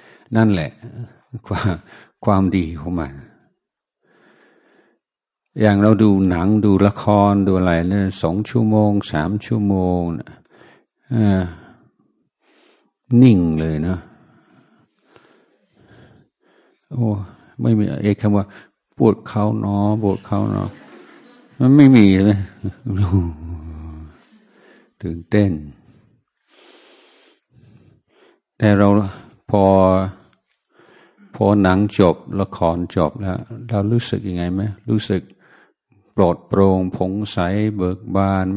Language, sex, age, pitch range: Thai, male, 60-79, 90-105 Hz